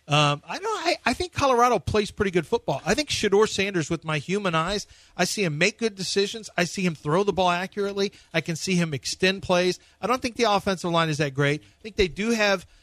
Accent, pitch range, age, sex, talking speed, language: American, 140-185 Hz, 40-59, male, 245 wpm, English